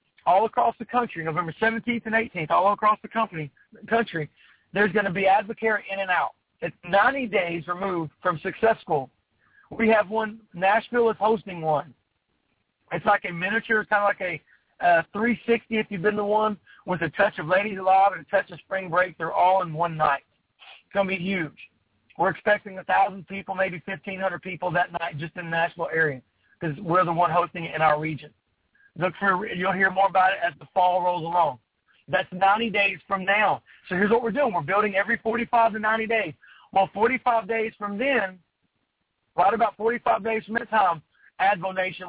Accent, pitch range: American, 175-220 Hz